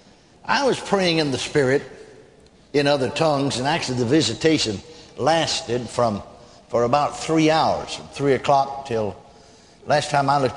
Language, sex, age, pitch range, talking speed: English, male, 60-79, 120-160 Hz, 155 wpm